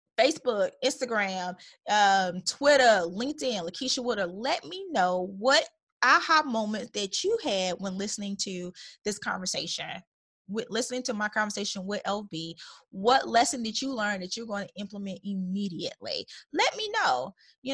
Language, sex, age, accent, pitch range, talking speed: English, female, 20-39, American, 205-260 Hz, 140 wpm